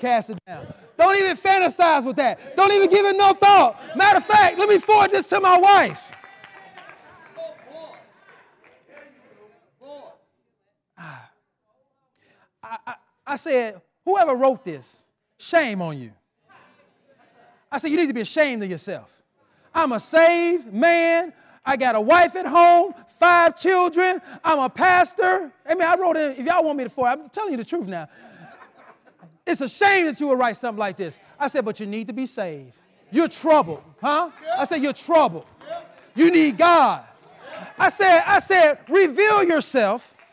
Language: English